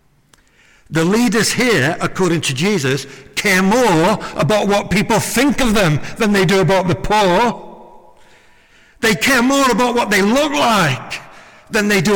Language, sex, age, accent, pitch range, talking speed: English, male, 60-79, British, 130-195 Hz, 155 wpm